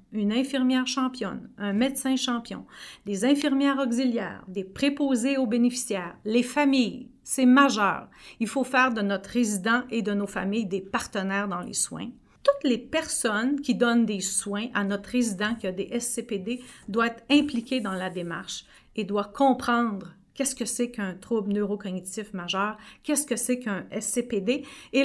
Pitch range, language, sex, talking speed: 200-260 Hz, French, female, 165 wpm